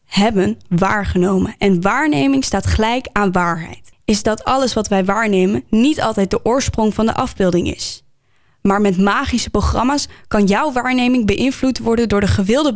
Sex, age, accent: female, 10-29, Dutch